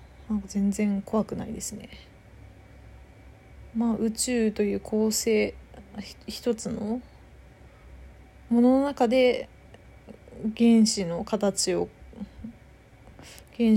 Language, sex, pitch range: Japanese, female, 180-225 Hz